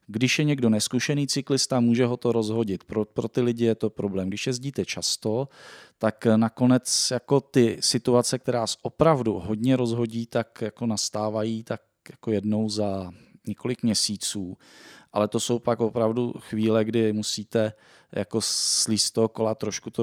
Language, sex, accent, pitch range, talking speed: Czech, male, native, 105-120 Hz, 155 wpm